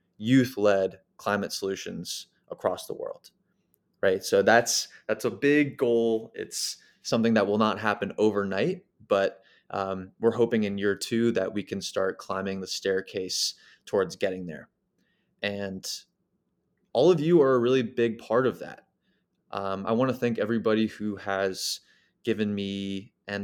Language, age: English, 20-39